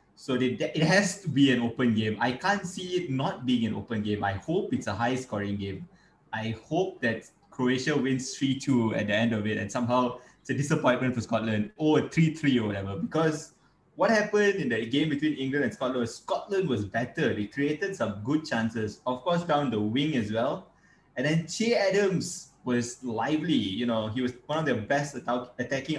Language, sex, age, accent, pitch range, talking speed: English, male, 20-39, Malaysian, 115-160 Hz, 205 wpm